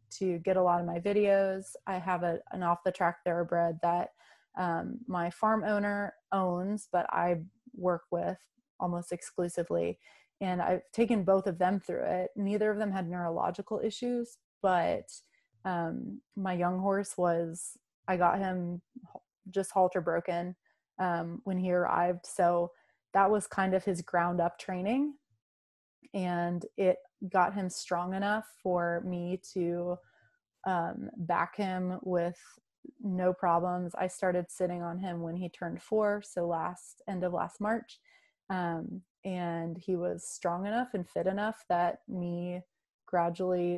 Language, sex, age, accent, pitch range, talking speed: English, female, 20-39, American, 175-200 Hz, 150 wpm